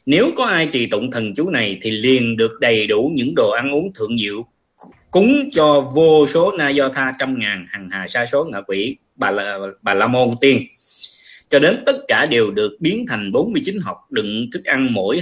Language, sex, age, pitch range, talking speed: Vietnamese, male, 20-39, 110-150 Hz, 215 wpm